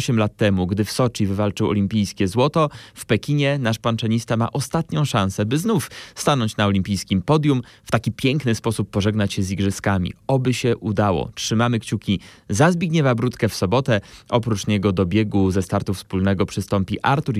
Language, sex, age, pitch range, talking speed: Polish, male, 20-39, 100-125 Hz, 170 wpm